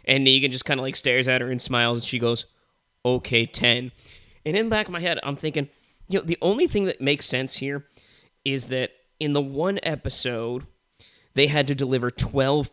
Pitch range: 125-150 Hz